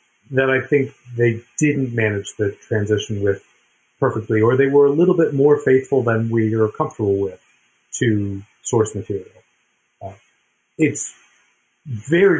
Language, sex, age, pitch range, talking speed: English, male, 30-49, 105-140 Hz, 140 wpm